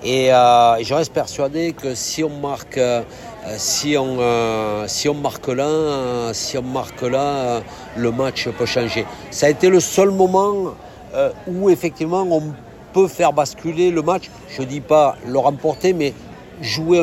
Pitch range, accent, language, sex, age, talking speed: 120-160 Hz, French, French, male, 60-79, 175 wpm